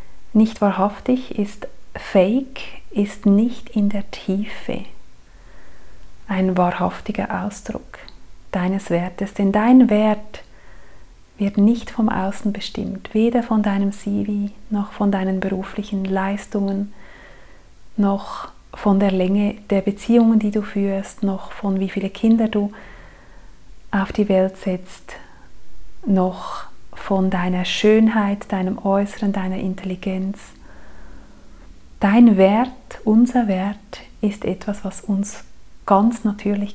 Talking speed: 110 wpm